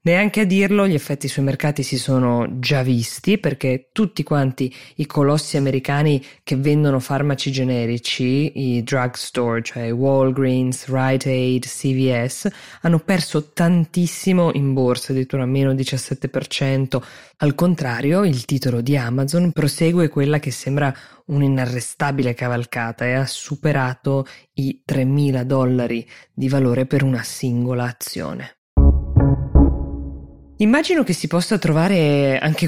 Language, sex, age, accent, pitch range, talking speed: Italian, female, 20-39, native, 125-160 Hz, 120 wpm